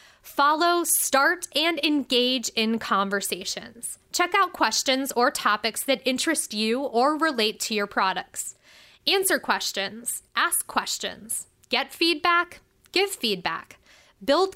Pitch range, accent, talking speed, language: 220-310 Hz, American, 115 wpm, English